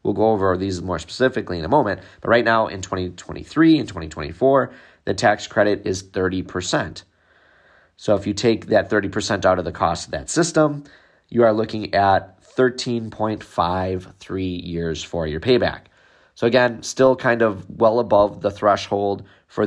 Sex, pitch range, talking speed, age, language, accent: male, 90-115 Hz, 160 wpm, 30-49, English, American